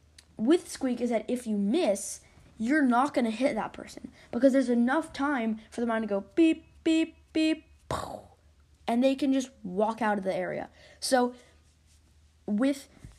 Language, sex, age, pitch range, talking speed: English, female, 10-29, 200-275 Hz, 165 wpm